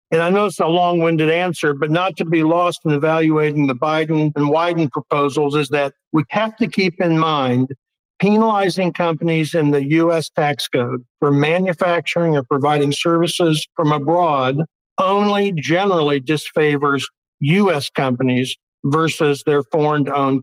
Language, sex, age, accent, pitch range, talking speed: English, male, 60-79, American, 145-175 Hz, 145 wpm